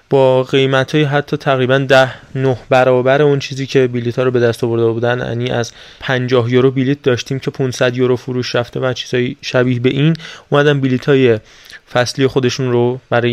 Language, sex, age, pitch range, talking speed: Persian, male, 20-39, 120-140 Hz, 180 wpm